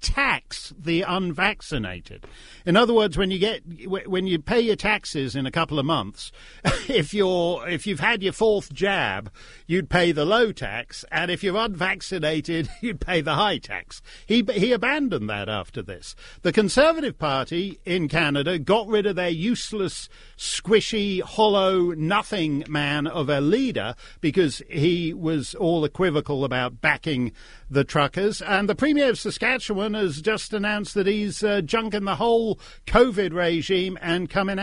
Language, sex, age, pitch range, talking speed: English, male, 50-69, 150-205 Hz, 160 wpm